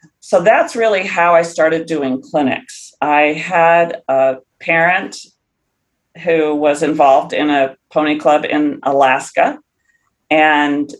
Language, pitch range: English, 145-170 Hz